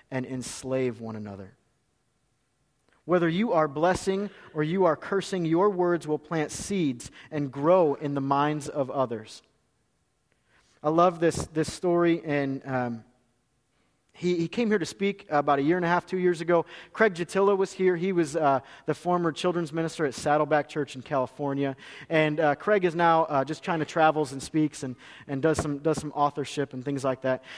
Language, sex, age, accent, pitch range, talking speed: English, male, 30-49, American, 145-180 Hz, 185 wpm